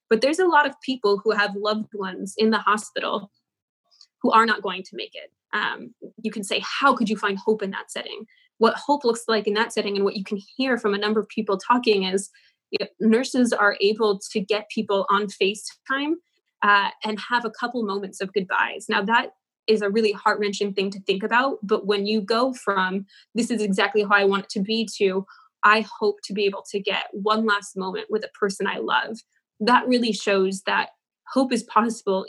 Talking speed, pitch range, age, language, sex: 210 wpm, 200-230 Hz, 20-39, English, female